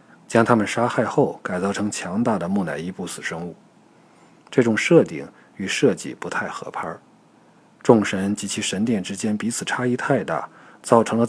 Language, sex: Chinese, male